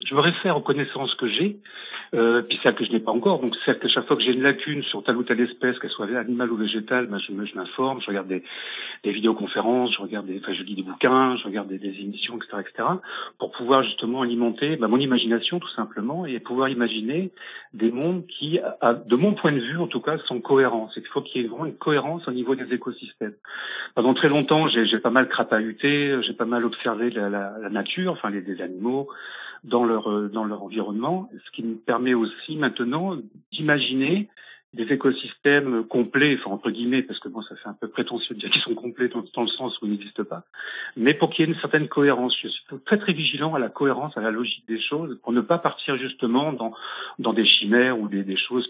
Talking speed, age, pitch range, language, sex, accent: 235 wpm, 40-59, 110-140 Hz, French, male, French